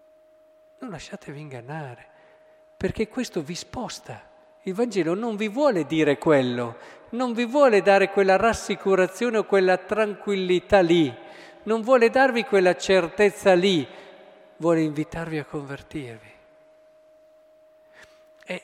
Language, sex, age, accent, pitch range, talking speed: Italian, male, 50-69, native, 155-205 Hz, 115 wpm